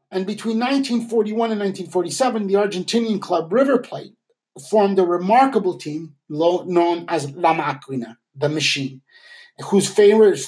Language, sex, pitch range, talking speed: English, male, 165-215 Hz, 125 wpm